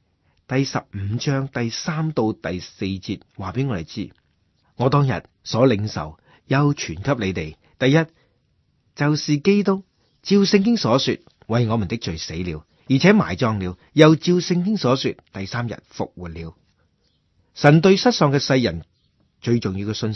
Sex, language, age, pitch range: male, Chinese, 30-49, 95-150 Hz